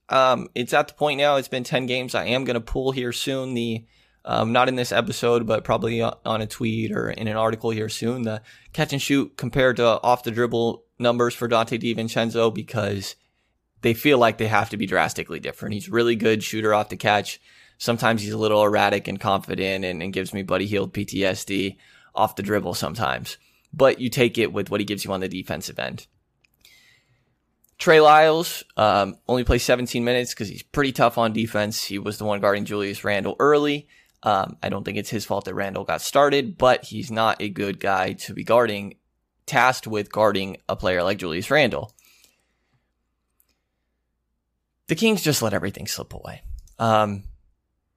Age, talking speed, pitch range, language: 20-39, 190 wpm, 100-125 Hz, English